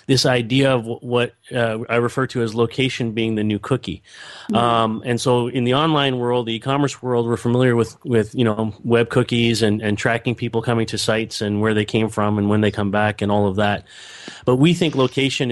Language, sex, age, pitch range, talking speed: English, male, 30-49, 110-125 Hz, 220 wpm